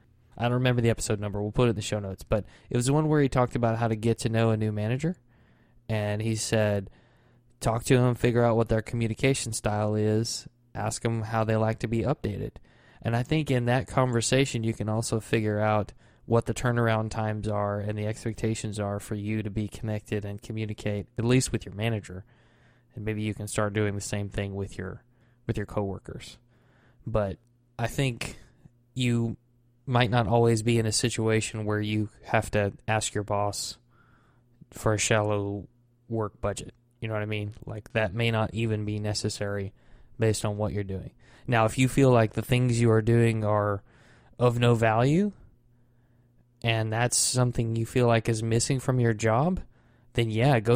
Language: English